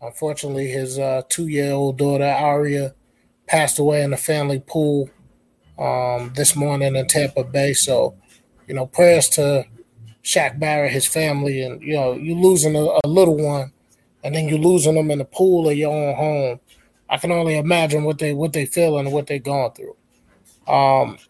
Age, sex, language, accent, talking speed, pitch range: 20-39, male, English, American, 175 wpm, 145-195 Hz